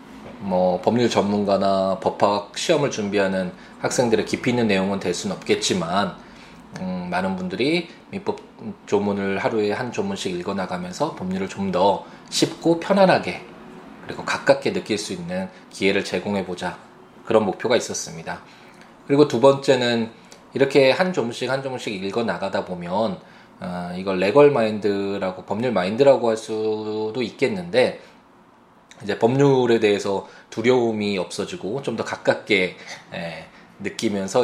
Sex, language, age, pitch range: male, Korean, 20-39, 95-135 Hz